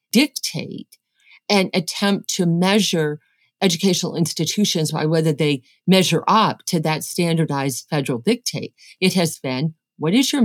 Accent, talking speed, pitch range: American, 130 wpm, 155-215 Hz